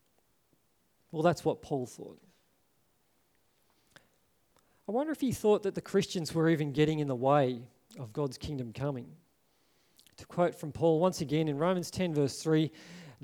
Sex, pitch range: male, 150-190 Hz